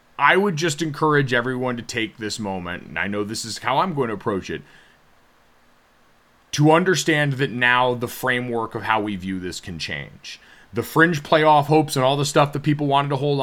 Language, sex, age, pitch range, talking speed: English, male, 30-49, 120-160 Hz, 205 wpm